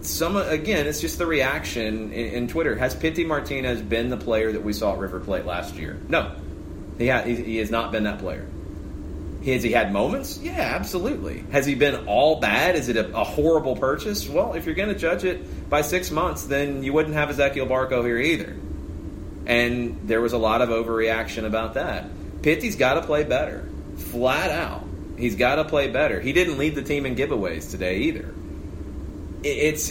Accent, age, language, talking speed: American, 30-49, English, 200 wpm